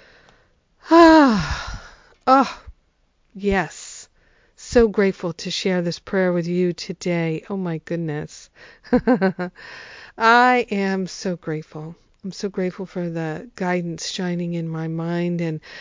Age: 50-69